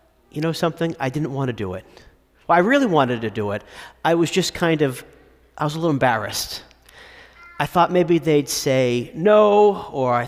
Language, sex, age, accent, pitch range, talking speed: English, male, 40-59, American, 110-170 Hz, 200 wpm